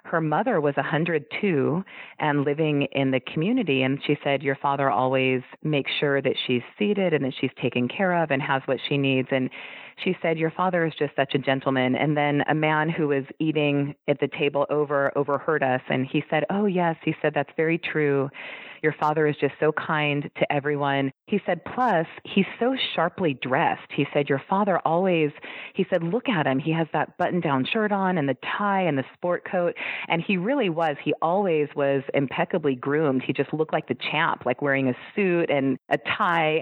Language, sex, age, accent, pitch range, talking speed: English, female, 30-49, American, 140-165 Hz, 205 wpm